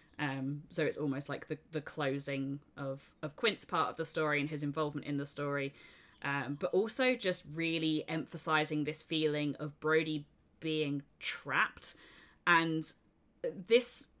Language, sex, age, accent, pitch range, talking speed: English, female, 20-39, British, 145-180 Hz, 150 wpm